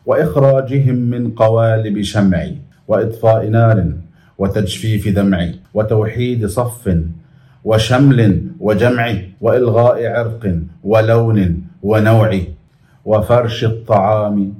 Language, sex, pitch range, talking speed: Arabic, male, 100-120 Hz, 75 wpm